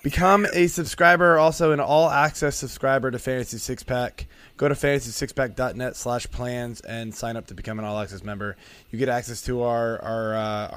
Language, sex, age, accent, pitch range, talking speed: English, male, 20-39, American, 105-135 Hz, 190 wpm